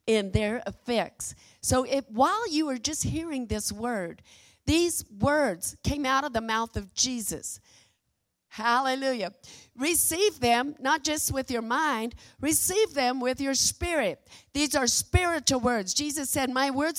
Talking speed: 145 wpm